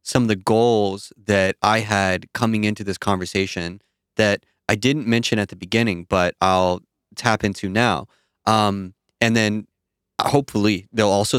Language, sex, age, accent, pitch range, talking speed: English, male, 20-39, American, 95-115 Hz, 155 wpm